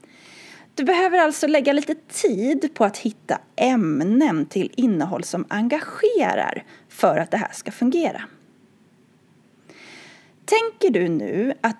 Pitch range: 210-315 Hz